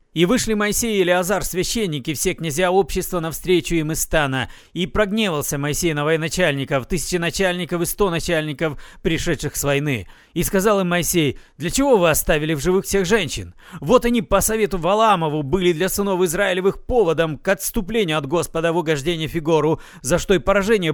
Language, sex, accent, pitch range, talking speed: Russian, male, native, 155-185 Hz, 165 wpm